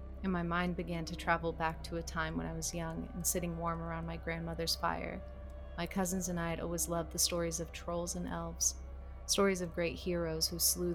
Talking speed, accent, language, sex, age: 220 wpm, American, English, female, 30-49